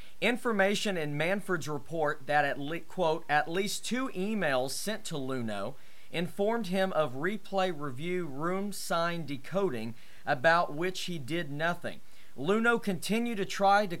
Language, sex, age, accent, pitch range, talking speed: English, male, 40-59, American, 145-185 Hz, 140 wpm